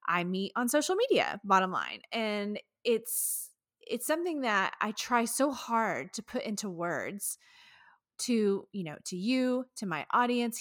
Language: English